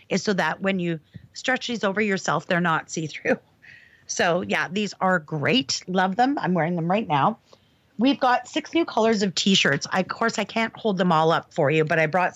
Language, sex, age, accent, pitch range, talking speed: English, female, 30-49, American, 180-230 Hz, 215 wpm